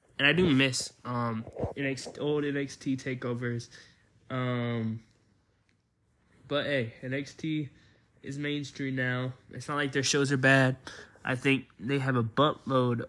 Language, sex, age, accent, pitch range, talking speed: English, male, 20-39, American, 115-135 Hz, 130 wpm